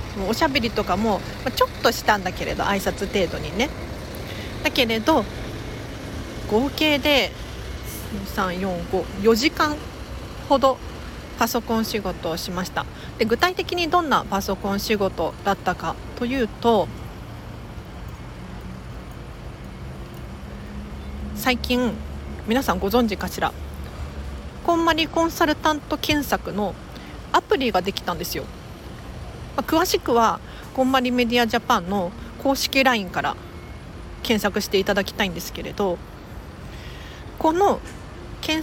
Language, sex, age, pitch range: Japanese, female, 40-59, 205-310 Hz